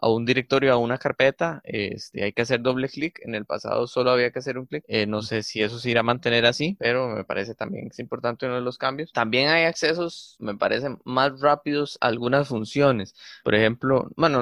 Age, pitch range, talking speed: 20-39, 115-140 Hz, 230 wpm